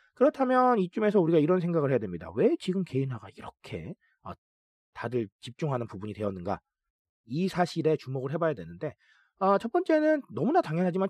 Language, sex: Korean, male